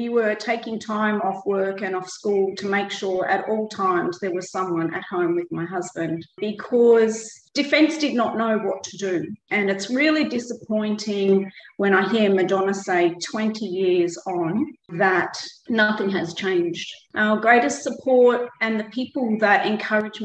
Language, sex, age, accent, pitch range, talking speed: English, female, 40-59, Australian, 195-235 Hz, 165 wpm